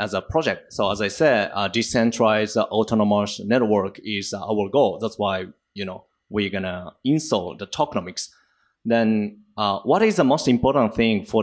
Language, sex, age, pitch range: Japanese, male, 30-49, 105-135 Hz